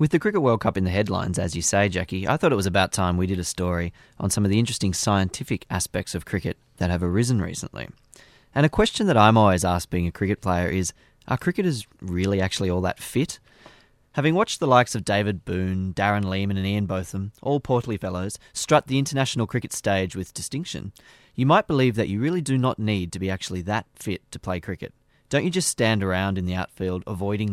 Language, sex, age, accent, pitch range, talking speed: English, male, 20-39, Australian, 95-125 Hz, 220 wpm